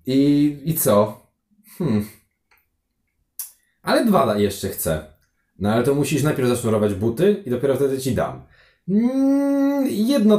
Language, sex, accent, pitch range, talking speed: Polish, male, native, 100-145 Hz, 125 wpm